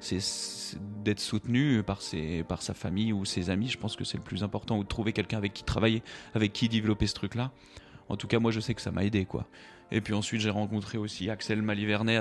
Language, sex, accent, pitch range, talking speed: French, male, French, 100-120 Hz, 240 wpm